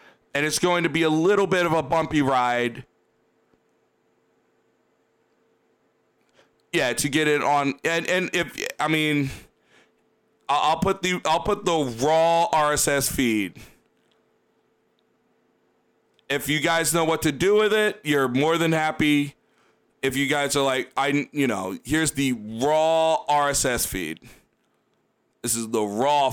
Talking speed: 140 wpm